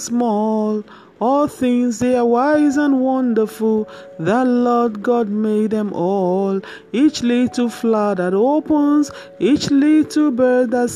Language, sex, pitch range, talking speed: English, male, 170-220 Hz, 125 wpm